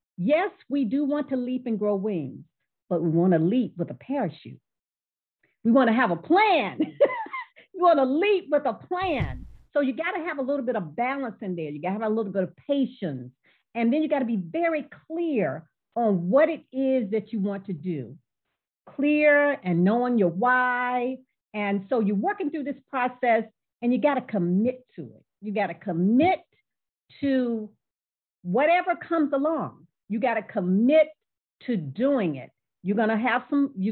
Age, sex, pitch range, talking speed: 50-69, female, 205-290 Hz, 180 wpm